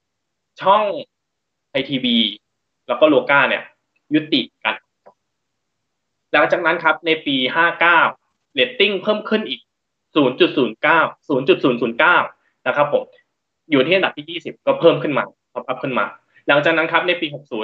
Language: Thai